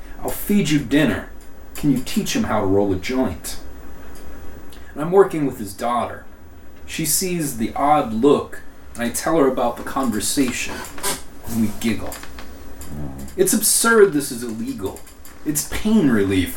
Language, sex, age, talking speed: English, male, 30-49, 150 wpm